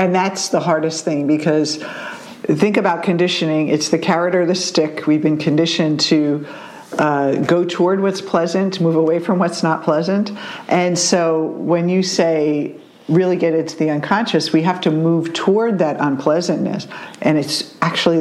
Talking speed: 165 wpm